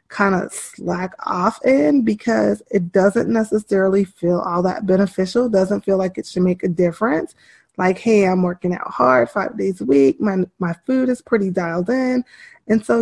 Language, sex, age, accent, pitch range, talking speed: English, female, 20-39, American, 185-220 Hz, 185 wpm